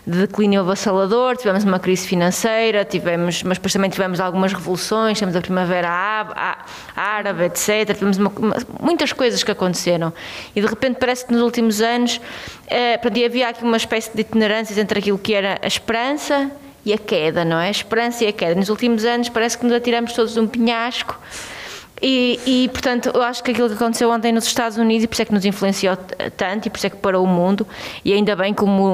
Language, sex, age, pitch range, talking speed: Portuguese, female, 20-39, 190-235 Hz, 205 wpm